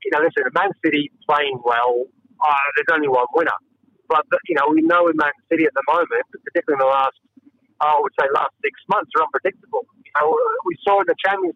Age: 40-59